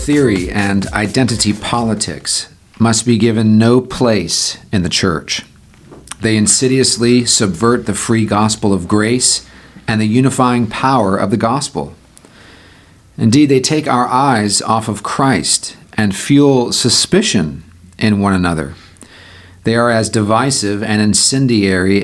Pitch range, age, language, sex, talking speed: 100-125 Hz, 40-59, English, male, 130 wpm